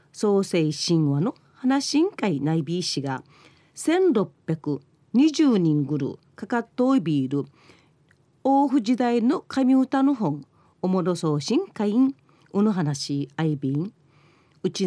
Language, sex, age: Japanese, female, 40-59